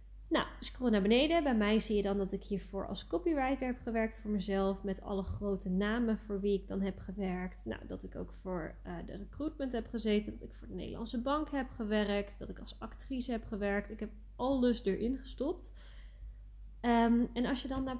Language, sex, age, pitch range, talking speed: Dutch, female, 20-39, 200-250 Hz, 210 wpm